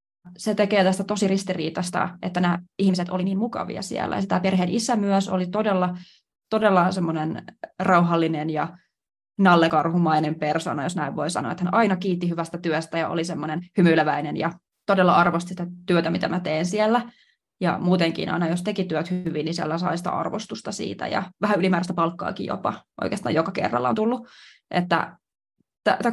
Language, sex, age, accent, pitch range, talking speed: Finnish, female, 20-39, native, 170-195 Hz, 160 wpm